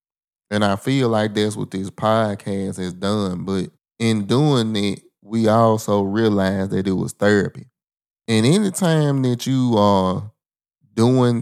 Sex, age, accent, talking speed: male, 20-39, American, 145 wpm